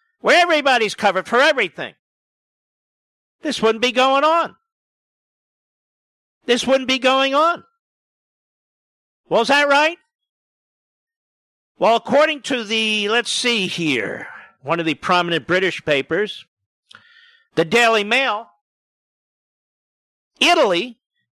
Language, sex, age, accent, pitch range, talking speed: English, male, 50-69, American, 210-280 Hz, 100 wpm